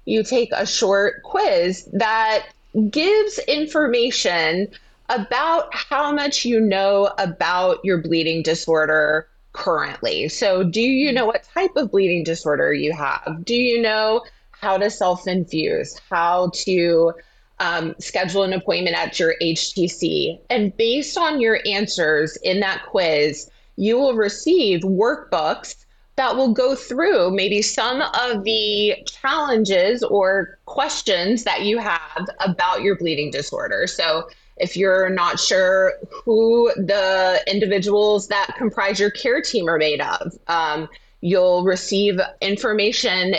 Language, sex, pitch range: English, female, 180-245 Hz